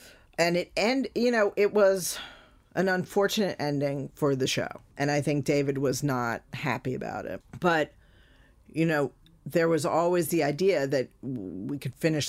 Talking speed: 165 wpm